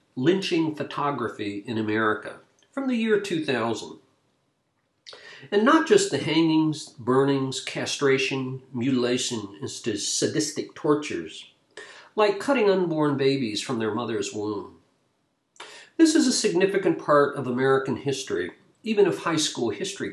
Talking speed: 120 wpm